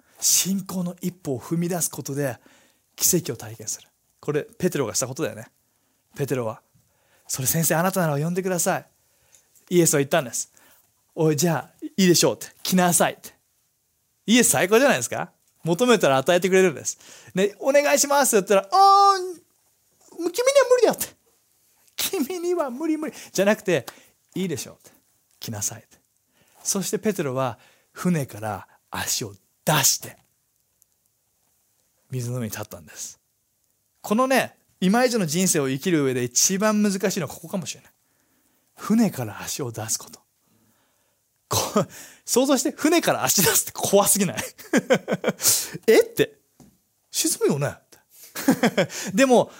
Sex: male